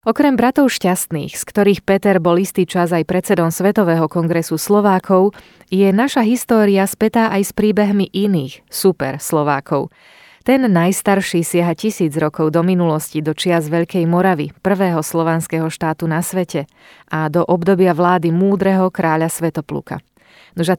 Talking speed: 140 wpm